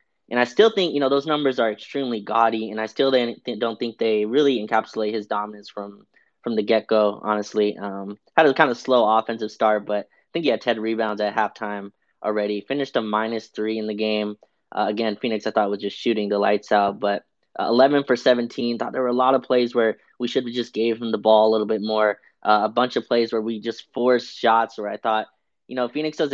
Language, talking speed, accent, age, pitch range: English, 235 wpm, American, 20-39, 105-120 Hz